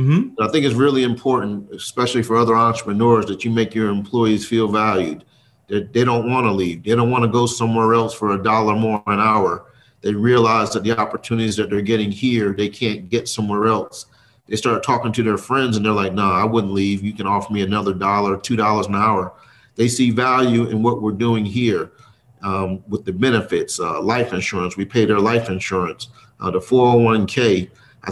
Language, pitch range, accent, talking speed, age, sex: English, 100-120 Hz, American, 205 wpm, 40-59, male